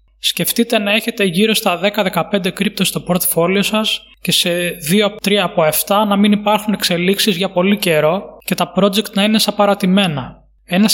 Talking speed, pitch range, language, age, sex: 165 wpm, 165-205 Hz, Greek, 20-39, male